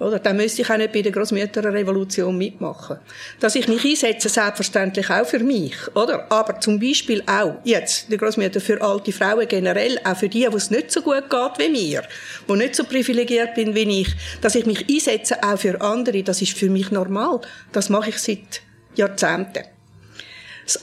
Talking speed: 190 wpm